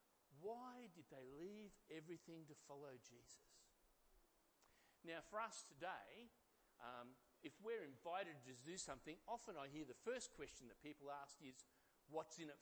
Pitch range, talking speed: 140-195 Hz, 150 wpm